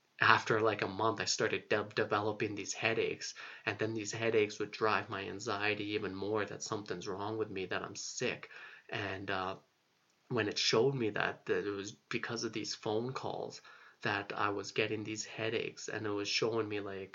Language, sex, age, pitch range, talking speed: English, male, 20-39, 105-115 Hz, 190 wpm